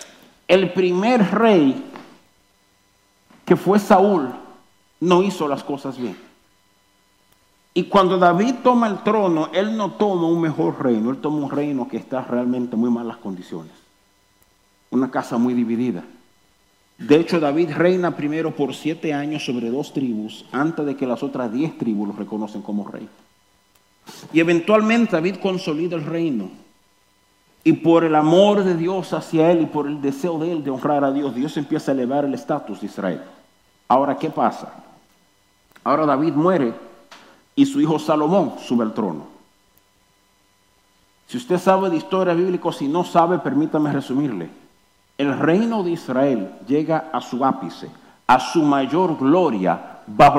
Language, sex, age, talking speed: Spanish, male, 50-69, 155 wpm